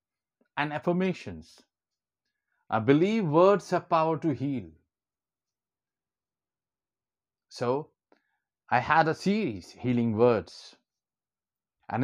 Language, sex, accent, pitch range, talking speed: Hindi, male, native, 110-170 Hz, 85 wpm